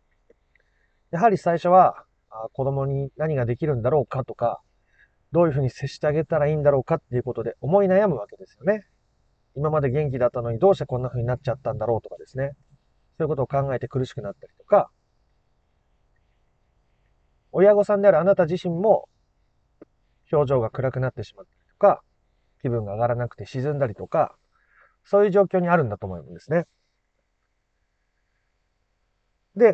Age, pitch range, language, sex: 40-59, 115-165 Hz, Japanese, male